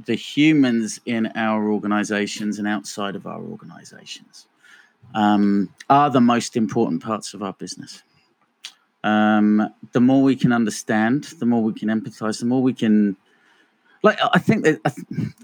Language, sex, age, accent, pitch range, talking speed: English, male, 30-49, British, 110-150 Hz, 150 wpm